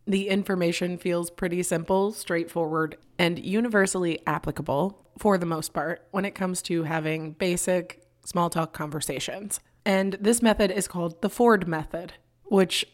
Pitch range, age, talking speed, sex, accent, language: 160-190 Hz, 20-39, 145 wpm, female, American, English